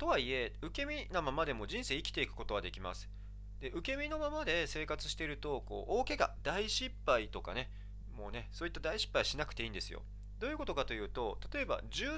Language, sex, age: Japanese, male, 40-59